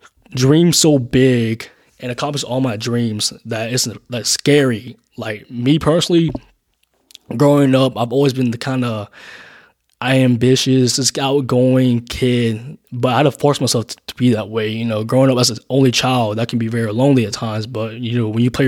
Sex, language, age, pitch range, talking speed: male, English, 20-39, 115-140 Hz, 190 wpm